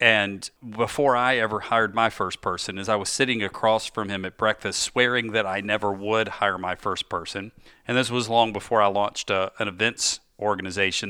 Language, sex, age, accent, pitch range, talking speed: English, male, 40-59, American, 105-125 Hz, 195 wpm